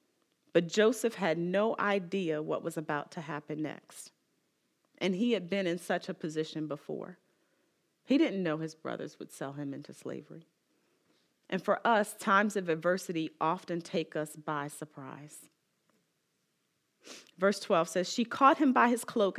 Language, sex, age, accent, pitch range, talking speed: English, female, 40-59, American, 165-230 Hz, 155 wpm